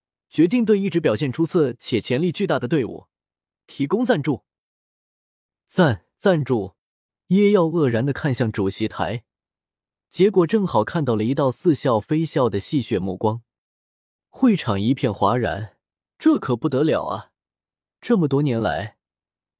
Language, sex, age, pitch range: Chinese, male, 20-39, 110-170 Hz